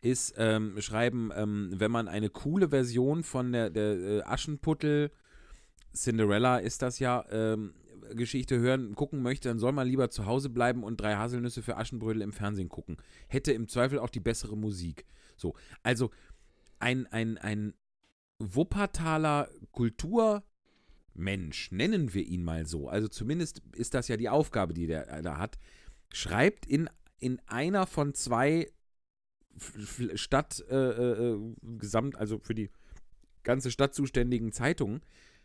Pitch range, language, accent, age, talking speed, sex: 105-140 Hz, German, German, 40-59, 140 wpm, male